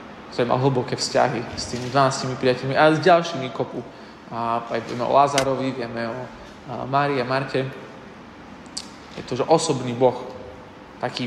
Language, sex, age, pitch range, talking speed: Slovak, male, 20-39, 125-145 Hz, 145 wpm